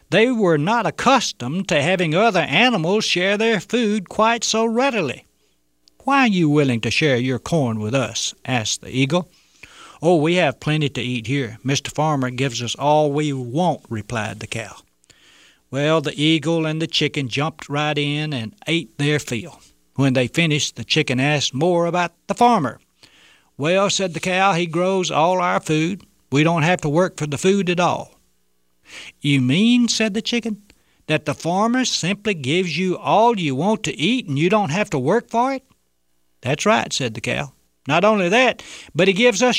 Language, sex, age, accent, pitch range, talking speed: English, male, 60-79, American, 130-195 Hz, 185 wpm